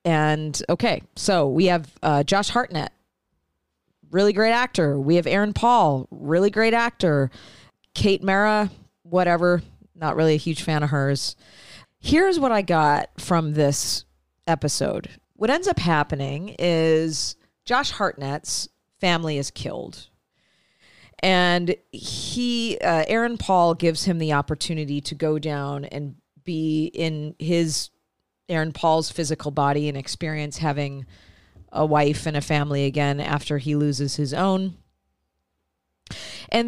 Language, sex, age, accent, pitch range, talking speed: English, female, 40-59, American, 145-180 Hz, 130 wpm